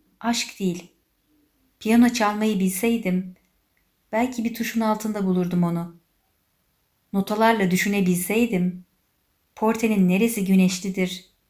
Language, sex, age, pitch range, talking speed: Turkish, female, 50-69, 180-210 Hz, 85 wpm